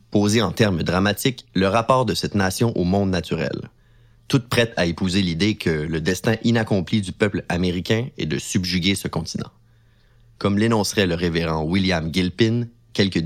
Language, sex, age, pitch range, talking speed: French, male, 30-49, 90-115 Hz, 165 wpm